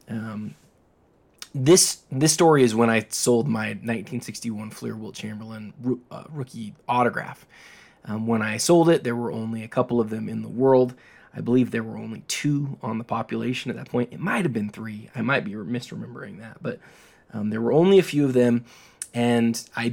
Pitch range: 110-130 Hz